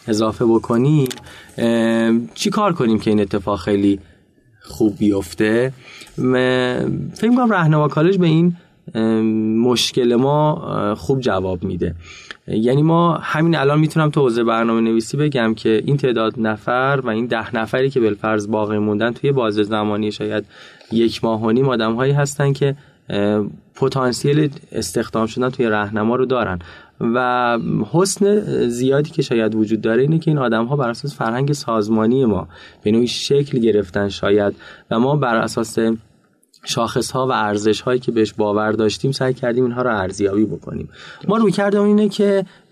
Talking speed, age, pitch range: 145 wpm, 20-39, 105-140 Hz